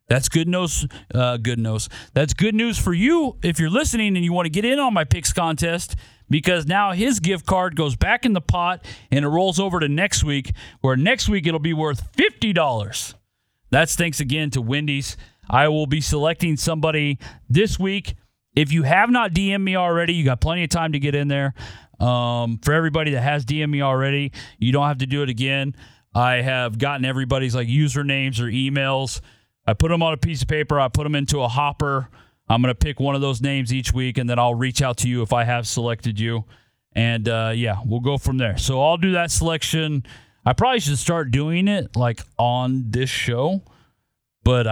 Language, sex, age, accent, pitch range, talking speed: English, male, 40-59, American, 120-165 Hz, 215 wpm